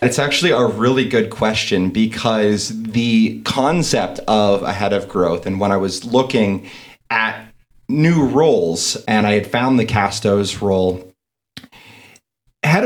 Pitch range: 105-130 Hz